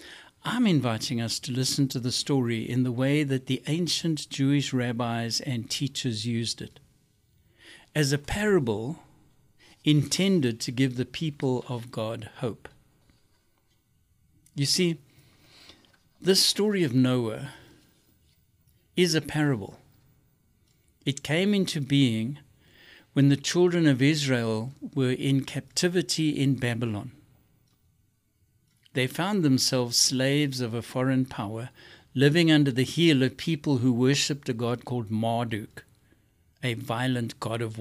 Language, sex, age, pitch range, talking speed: English, male, 60-79, 115-145 Hz, 125 wpm